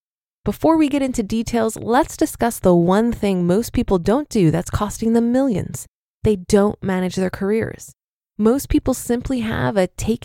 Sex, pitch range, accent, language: female, 180-250 Hz, American, English